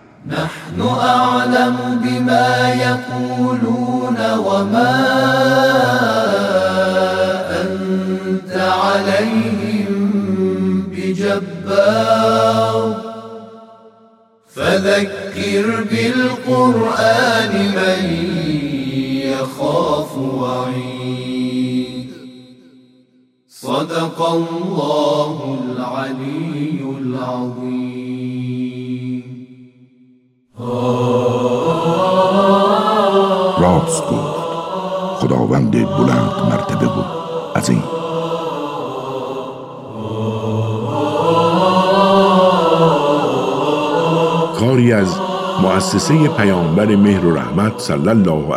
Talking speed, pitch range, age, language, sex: 40 wpm, 125-195 Hz, 40-59, Persian, male